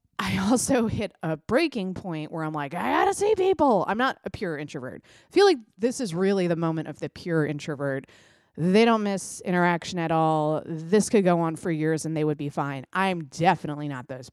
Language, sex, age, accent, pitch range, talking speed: English, female, 20-39, American, 160-225 Hz, 215 wpm